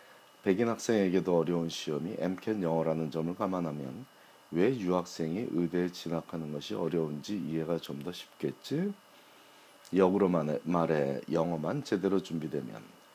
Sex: male